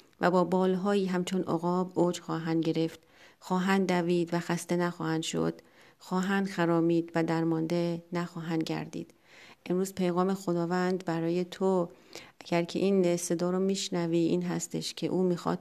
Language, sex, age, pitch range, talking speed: Persian, female, 40-59, 170-185 Hz, 140 wpm